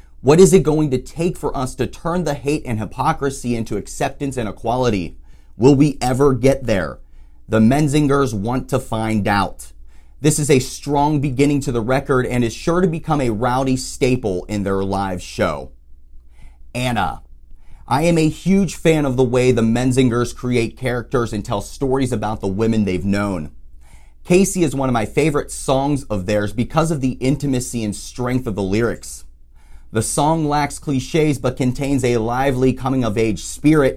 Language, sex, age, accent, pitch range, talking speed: English, male, 30-49, American, 105-140 Hz, 175 wpm